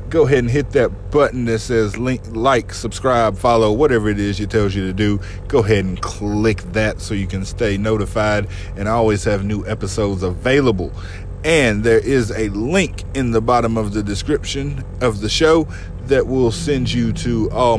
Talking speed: 185 wpm